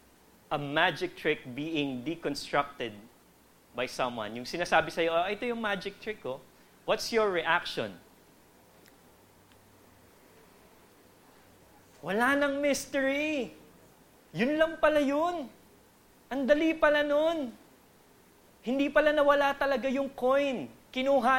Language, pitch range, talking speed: English, 160-250 Hz, 110 wpm